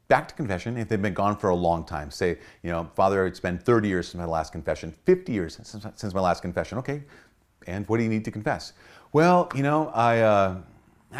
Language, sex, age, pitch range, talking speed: English, male, 30-49, 95-135 Hz, 225 wpm